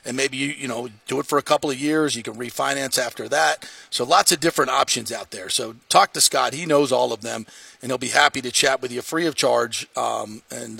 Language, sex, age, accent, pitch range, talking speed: English, male, 40-59, American, 125-145 Hz, 255 wpm